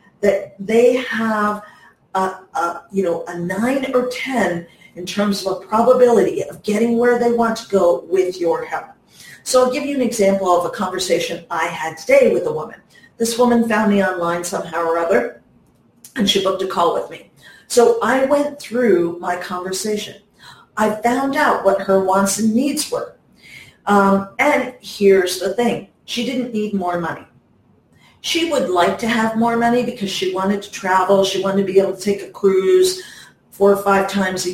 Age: 40-59